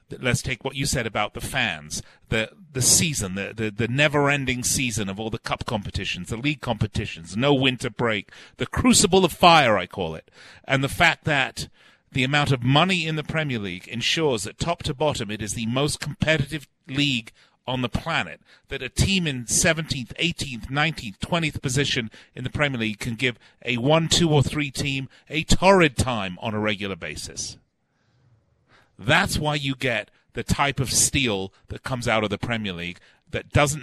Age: 40-59